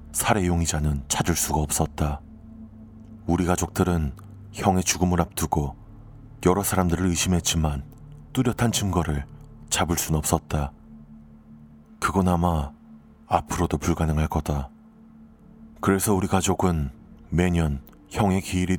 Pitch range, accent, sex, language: 75-105 Hz, native, male, Korean